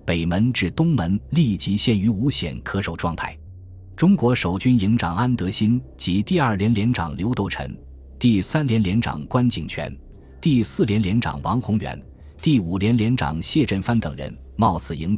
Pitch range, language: 80-115 Hz, Chinese